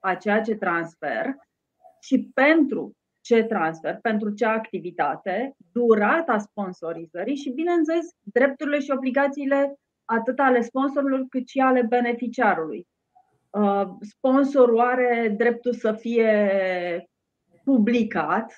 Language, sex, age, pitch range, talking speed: Romanian, female, 30-49, 185-245 Hz, 100 wpm